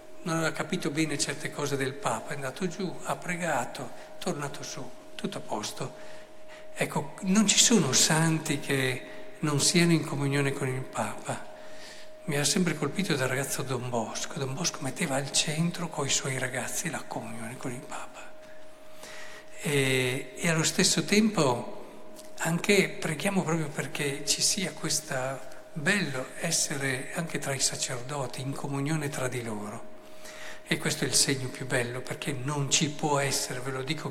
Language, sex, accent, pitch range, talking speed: Italian, male, native, 135-185 Hz, 160 wpm